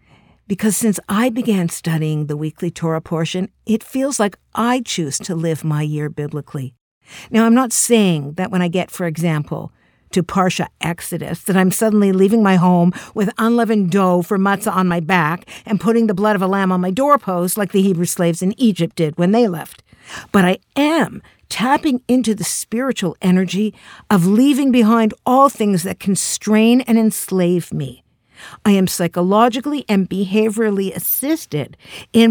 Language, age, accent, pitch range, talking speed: English, 50-69, American, 170-225 Hz, 170 wpm